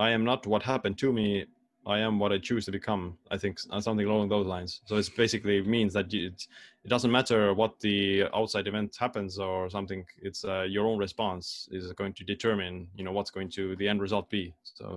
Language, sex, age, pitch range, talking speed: English, male, 20-39, 95-110 Hz, 220 wpm